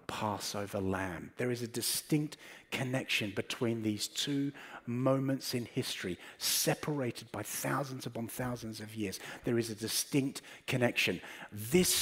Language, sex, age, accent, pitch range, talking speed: English, male, 50-69, British, 115-145 Hz, 130 wpm